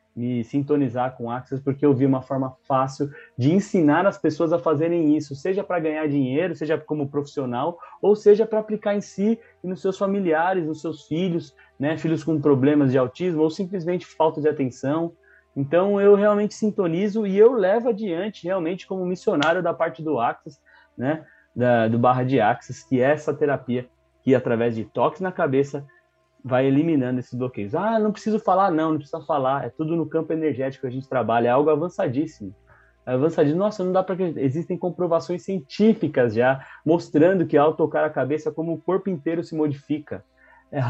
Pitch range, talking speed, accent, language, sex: 130-170 Hz, 190 wpm, Brazilian, Portuguese, male